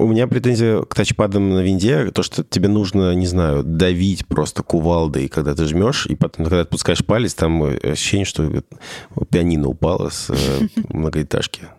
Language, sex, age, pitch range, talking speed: Russian, male, 20-39, 80-105 Hz, 160 wpm